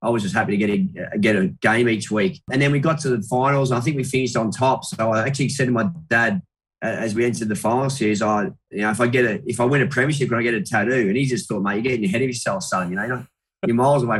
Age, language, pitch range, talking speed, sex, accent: 20-39, English, 110-130 Hz, 315 wpm, male, Australian